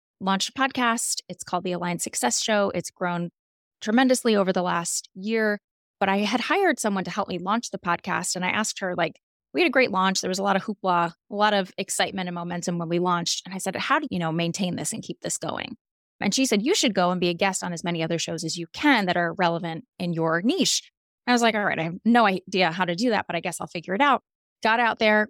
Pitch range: 175-220 Hz